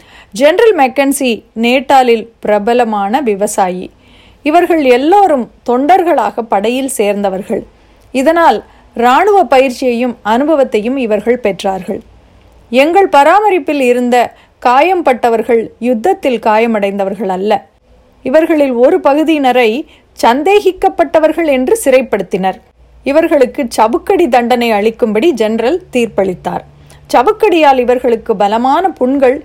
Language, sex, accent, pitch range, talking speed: Tamil, female, native, 225-305 Hz, 80 wpm